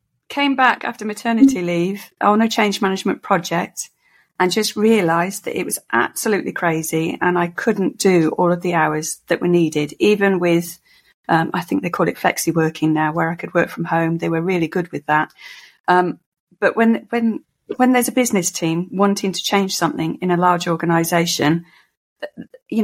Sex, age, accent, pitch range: female, 30-49, British, 165-195 Hz